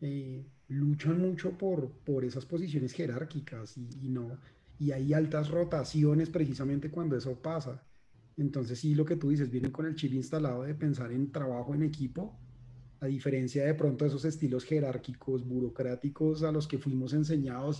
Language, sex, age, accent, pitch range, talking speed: Spanish, male, 30-49, Colombian, 130-155 Hz, 170 wpm